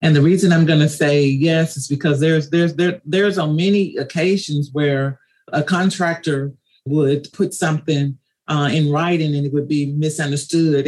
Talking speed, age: 170 wpm, 40-59